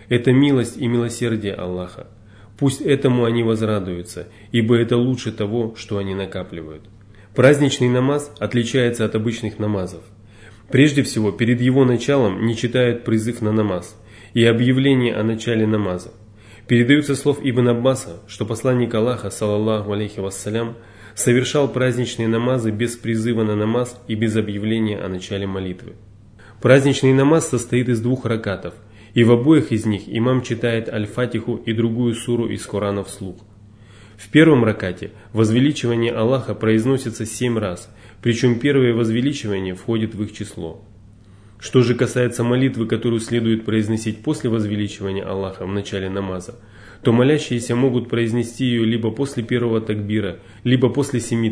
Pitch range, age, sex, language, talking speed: 105-125 Hz, 20-39, male, Russian, 140 wpm